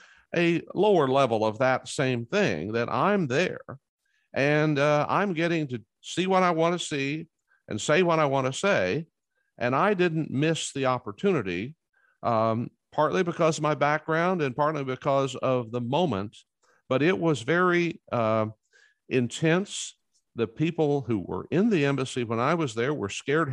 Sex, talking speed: male, 165 wpm